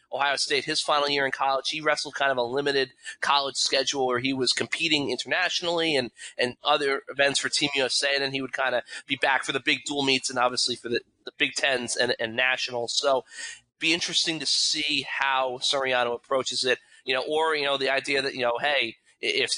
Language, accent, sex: English, American, male